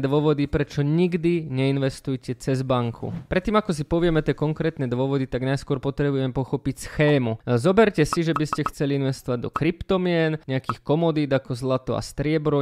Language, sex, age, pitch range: Japanese, male, 20-39, 135-160 Hz